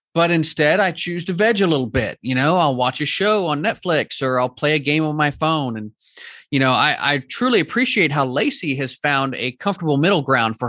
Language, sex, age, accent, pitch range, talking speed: English, male, 30-49, American, 135-190 Hz, 230 wpm